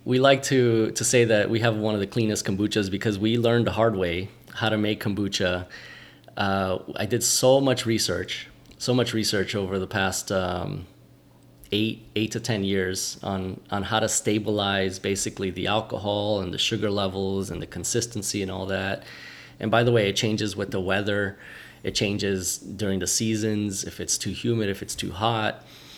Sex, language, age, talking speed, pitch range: male, English, 20-39, 185 wpm, 95-110 Hz